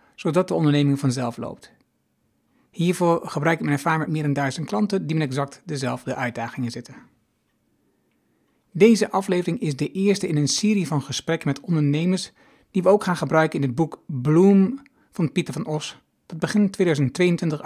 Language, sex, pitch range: Dutch, male, 145-185 Hz